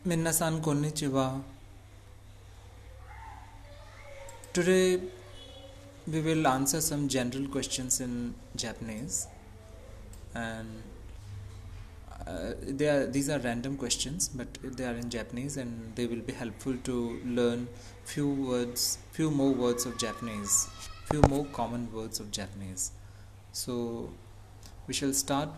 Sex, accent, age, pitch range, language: male, Indian, 30-49, 100-140 Hz, Japanese